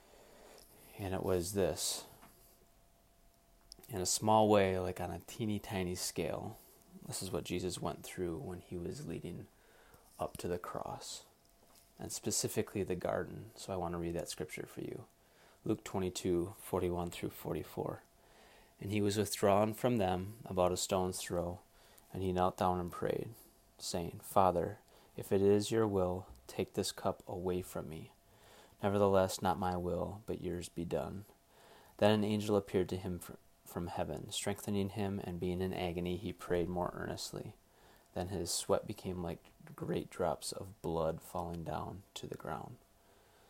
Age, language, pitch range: 20-39, English, 90-100 Hz